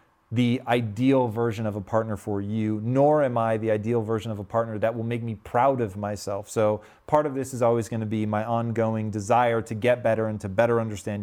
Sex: male